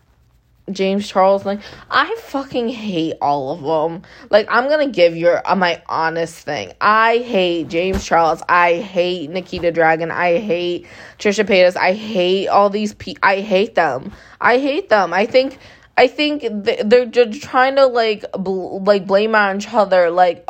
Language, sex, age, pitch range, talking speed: English, female, 20-39, 175-220 Hz, 170 wpm